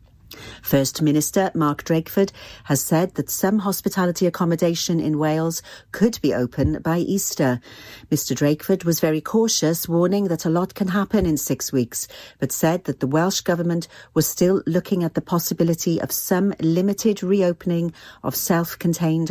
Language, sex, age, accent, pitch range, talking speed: English, female, 50-69, British, 145-180 Hz, 150 wpm